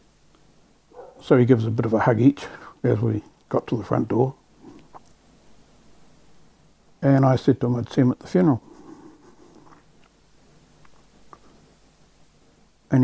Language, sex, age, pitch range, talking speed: English, male, 60-79, 110-135 Hz, 130 wpm